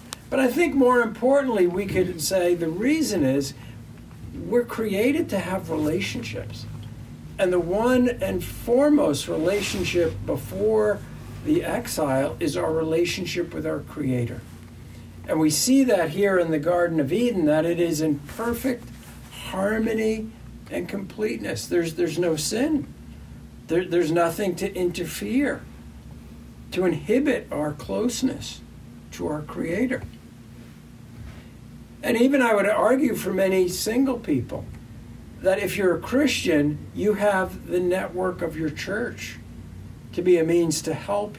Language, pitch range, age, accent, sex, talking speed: English, 150-220 Hz, 60-79, American, male, 135 wpm